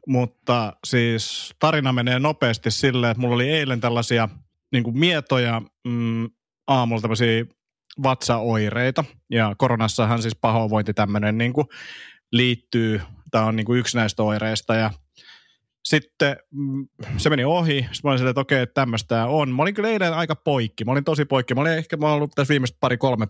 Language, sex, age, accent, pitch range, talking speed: Finnish, male, 30-49, native, 115-135 Hz, 160 wpm